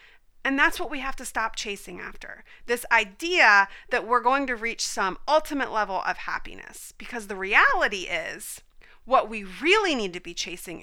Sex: female